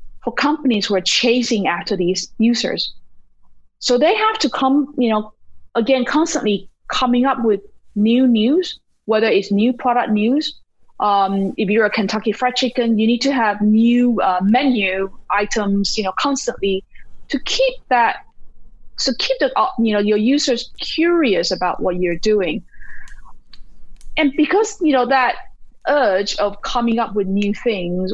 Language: English